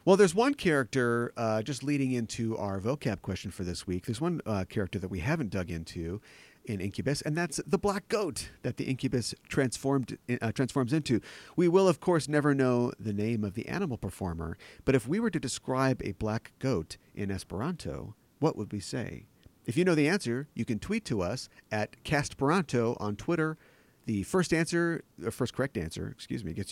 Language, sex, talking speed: English, male, 200 wpm